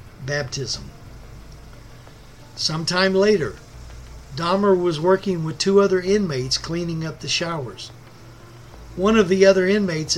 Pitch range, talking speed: 120-180 Hz, 110 wpm